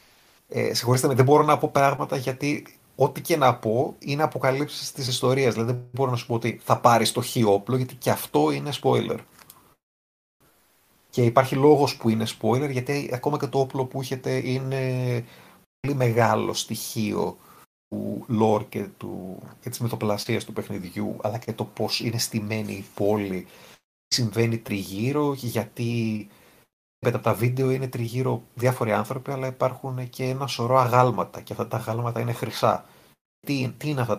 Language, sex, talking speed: Greek, male, 165 wpm